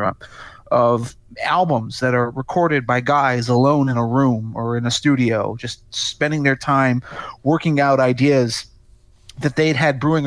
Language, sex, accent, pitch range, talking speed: English, male, American, 120-150 Hz, 150 wpm